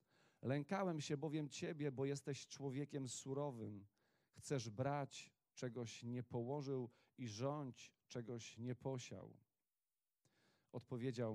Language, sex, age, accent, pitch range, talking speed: Polish, male, 40-59, native, 115-140 Hz, 100 wpm